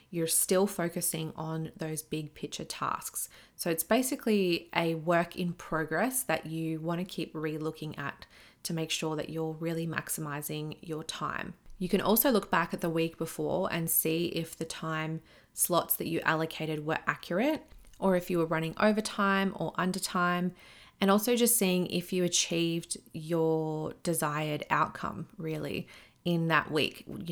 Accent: Australian